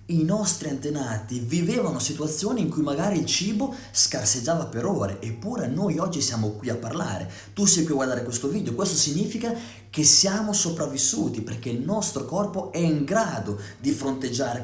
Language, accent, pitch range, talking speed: Italian, native, 125-180 Hz, 165 wpm